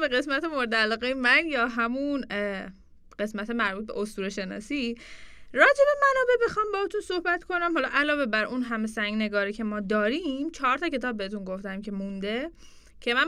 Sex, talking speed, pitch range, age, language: female, 165 wpm, 210-300 Hz, 10-29, Persian